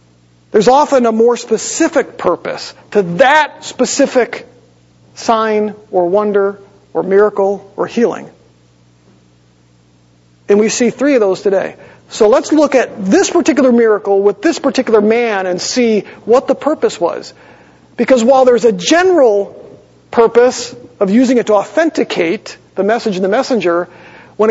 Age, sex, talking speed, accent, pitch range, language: 40-59, male, 140 wpm, American, 195-270 Hz, English